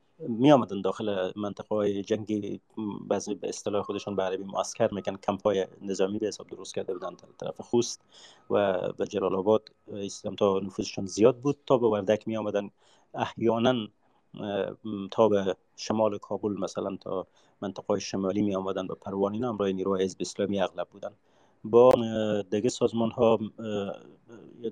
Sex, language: male, Persian